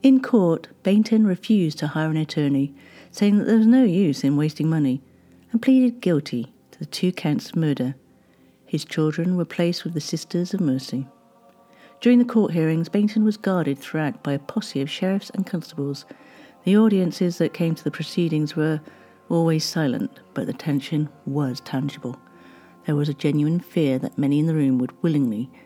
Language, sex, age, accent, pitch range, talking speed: English, female, 50-69, British, 140-200 Hz, 180 wpm